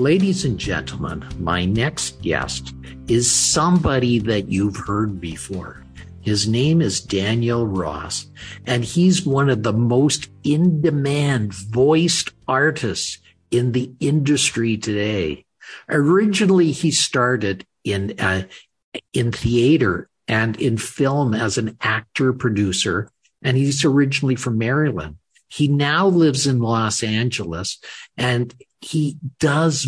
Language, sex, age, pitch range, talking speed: English, male, 50-69, 110-140 Hz, 115 wpm